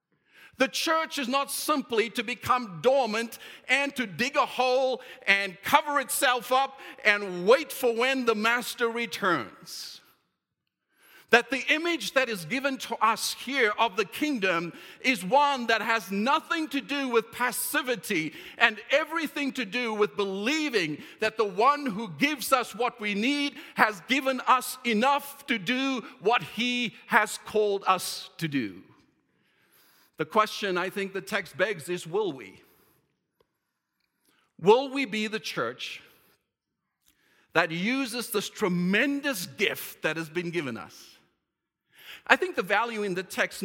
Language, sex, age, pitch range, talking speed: English, male, 50-69, 195-265 Hz, 145 wpm